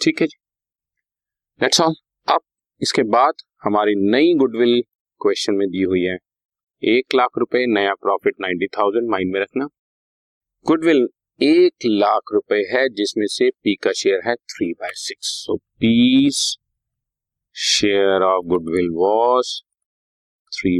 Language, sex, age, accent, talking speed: Hindi, male, 50-69, native, 120 wpm